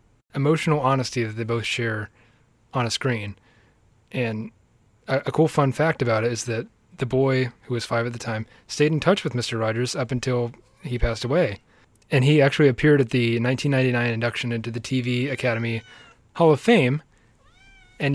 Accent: American